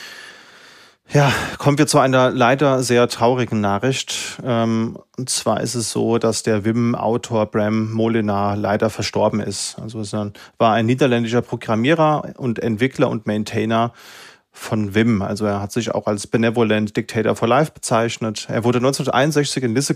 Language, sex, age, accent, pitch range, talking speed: German, male, 30-49, German, 110-130 Hz, 150 wpm